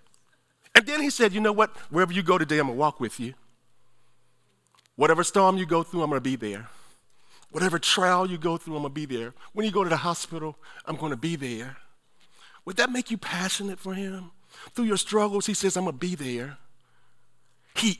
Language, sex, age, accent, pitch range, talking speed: English, male, 50-69, American, 110-165 Hz, 220 wpm